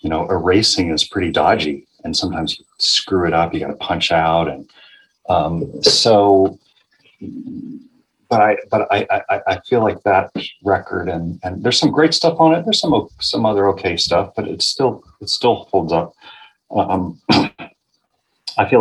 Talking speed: 170 wpm